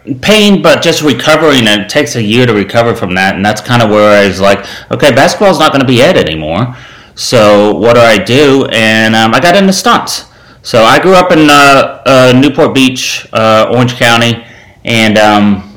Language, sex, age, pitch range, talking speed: English, male, 30-49, 110-130 Hz, 210 wpm